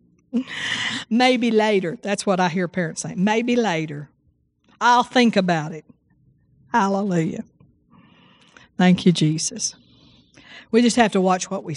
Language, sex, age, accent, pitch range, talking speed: English, female, 50-69, American, 170-225 Hz, 125 wpm